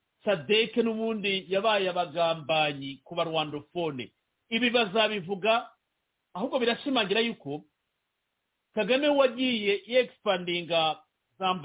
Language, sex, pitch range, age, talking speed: English, male, 175-240 Hz, 50-69, 100 wpm